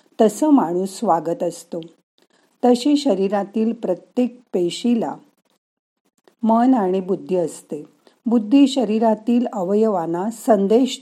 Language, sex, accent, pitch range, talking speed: Marathi, female, native, 180-240 Hz, 85 wpm